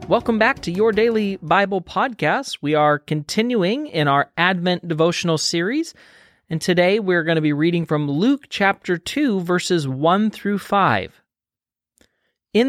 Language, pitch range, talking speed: English, 145-205 Hz, 140 wpm